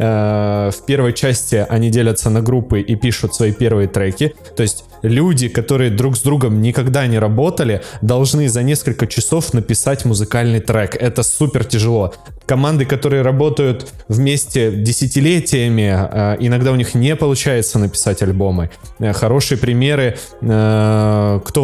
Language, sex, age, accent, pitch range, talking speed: Russian, male, 20-39, native, 110-135 Hz, 130 wpm